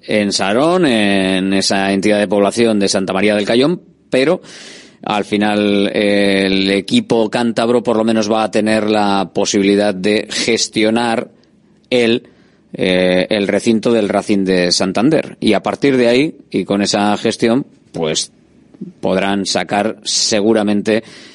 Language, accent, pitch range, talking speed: Spanish, Spanish, 100-110 Hz, 140 wpm